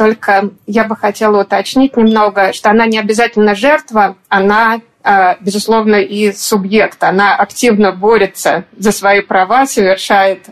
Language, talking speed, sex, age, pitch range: Russian, 125 wpm, female, 30-49, 200-230 Hz